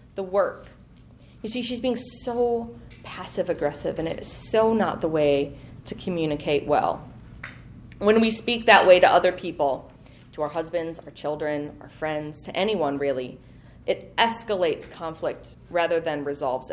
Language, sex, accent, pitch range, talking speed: English, female, American, 150-210 Hz, 155 wpm